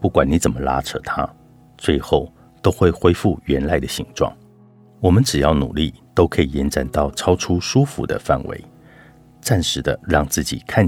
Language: Chinese